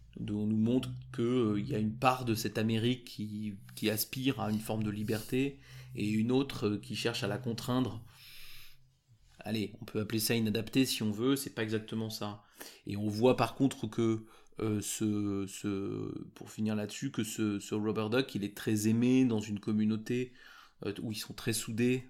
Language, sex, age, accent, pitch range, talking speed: French, male, 30-49, French, 105-120 Hz, 200 wpm